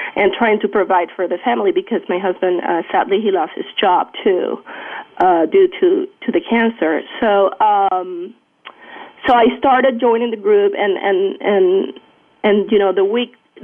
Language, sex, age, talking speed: English, female, 30-49, 170 wpm